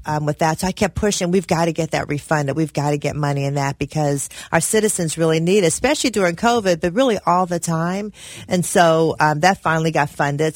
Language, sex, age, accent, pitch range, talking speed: English, female, 40-59, American, 135-160 Hz, 235 wpm